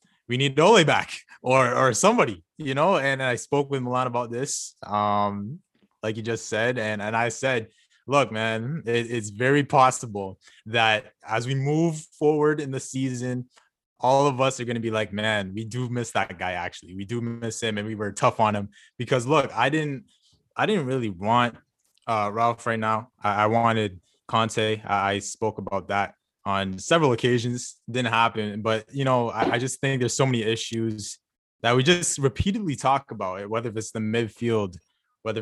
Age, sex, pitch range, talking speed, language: 20-39, male, 110-125 Hz, 190 wpm, English